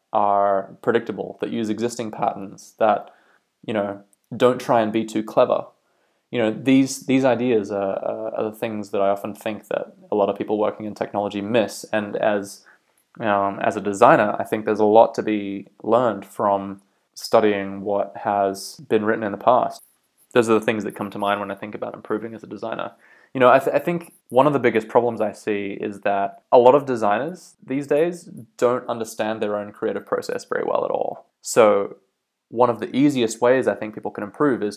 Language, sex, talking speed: English, male, 205 wpm